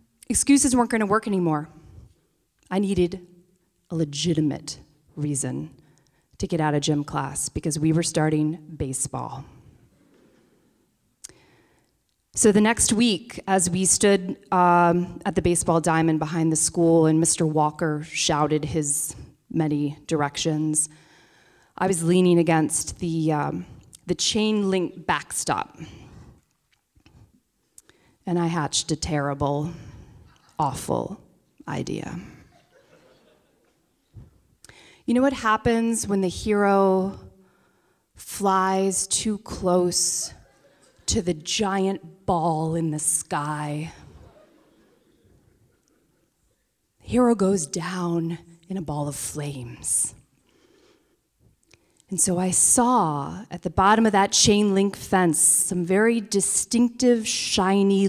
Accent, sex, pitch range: American, female, 155-195 Hz